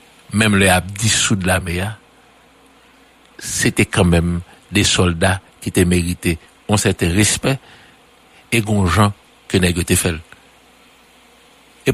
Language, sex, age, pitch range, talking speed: English, male, 60-79, 90-120 Hz, 110 wpm